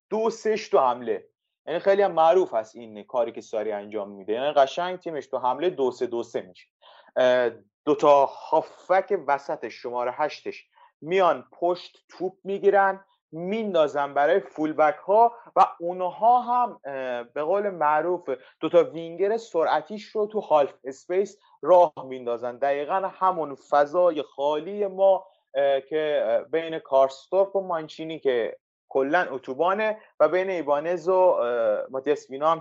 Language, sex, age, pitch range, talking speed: Persian, male, 30-49, 135-195 Hz, 135 wpm